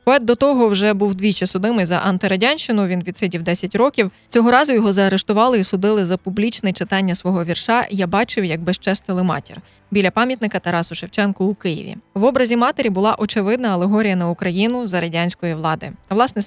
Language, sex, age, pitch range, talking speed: Ukrainian, female, 20-39, 185-230 Hz, 170 wpm